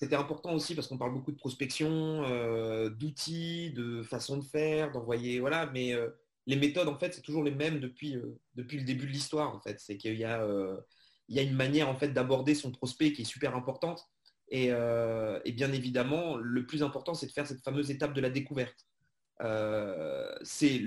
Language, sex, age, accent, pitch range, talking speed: French, male, 30-49, French, 135-170 Hz, 215 wpm